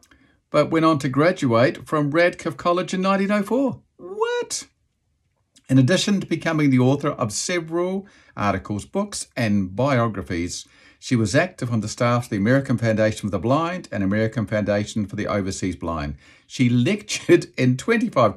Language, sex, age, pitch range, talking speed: English, male, 50-69, 105-145 Hz, 155 wpm